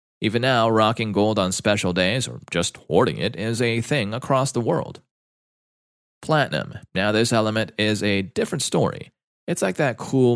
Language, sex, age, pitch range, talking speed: English, male, 30-49, 95-120 Hz, 170 wpm